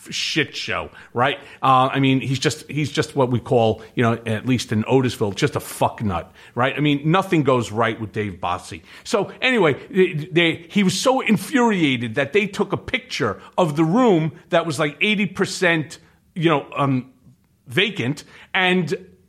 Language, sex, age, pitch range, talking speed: English, male, 40-59, 130-185 Hz, 175 wpm